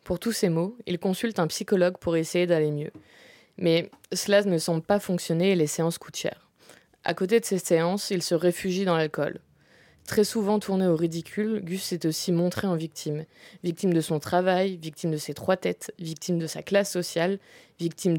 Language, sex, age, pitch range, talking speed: French, female, 20-39, 160-190 Hz, 195 wpm